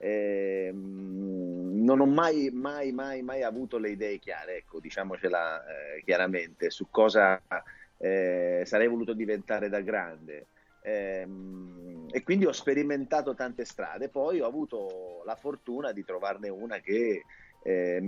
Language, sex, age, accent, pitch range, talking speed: Italian, male, 30-49, native, 95-125 Hz, 135 wpm